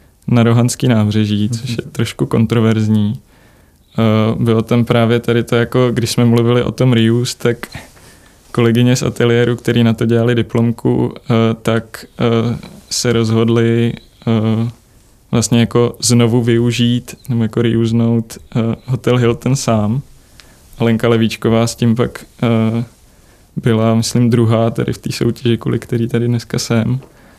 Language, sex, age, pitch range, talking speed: Czech, male, 20-39, 115-120 Hz, 125 wpm